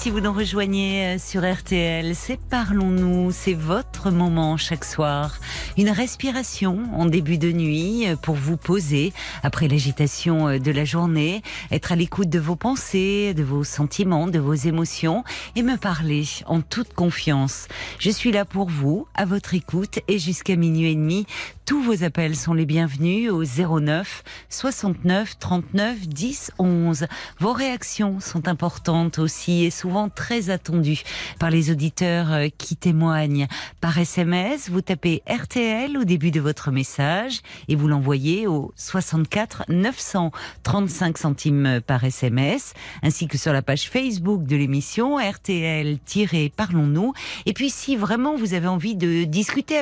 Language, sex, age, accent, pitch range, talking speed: French, female, 40-59, French, 155-200 Hz, 145 wpm